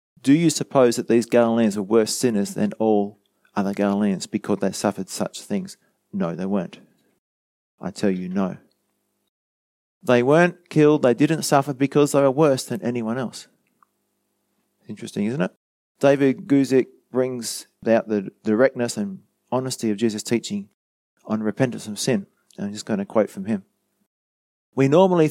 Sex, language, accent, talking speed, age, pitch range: male, English, Australian, 155 wpm, 30-49, 110-150 Hz